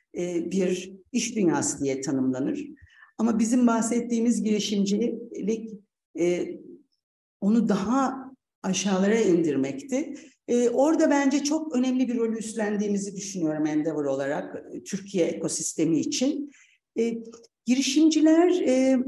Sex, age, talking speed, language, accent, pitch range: female, 60-79, 85 wpm, Turkish, native, 190-265 Hz